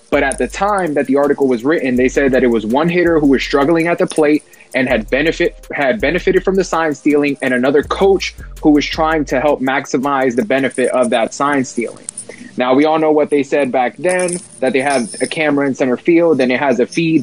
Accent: American